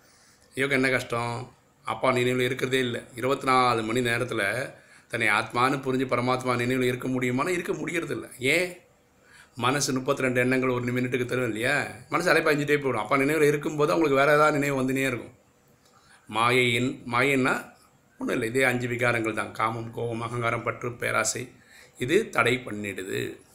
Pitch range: 115-135 Hz